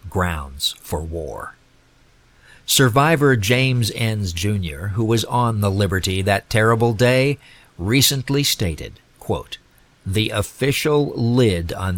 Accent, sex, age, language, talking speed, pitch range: American, male, 50-69, English, 105 wpm, 90-130 Hz